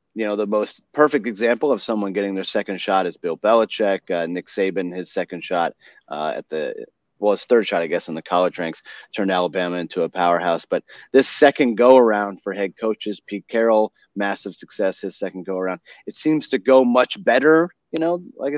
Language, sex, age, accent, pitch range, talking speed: English, male, 30-49, American, 100-140 Hz, 200 wpm